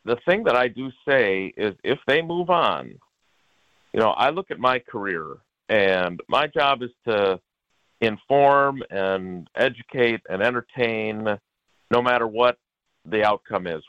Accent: American